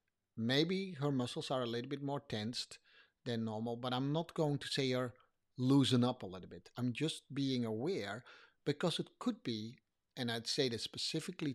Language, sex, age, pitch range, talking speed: English, male, 50-69, 120-160 Hz, 185 wpm